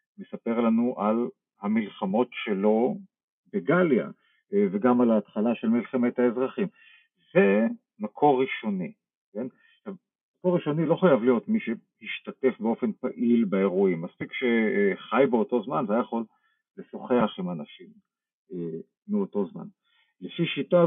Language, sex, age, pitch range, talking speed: Hebrew, male, 50-69, 130-205 Hz, 110 wpm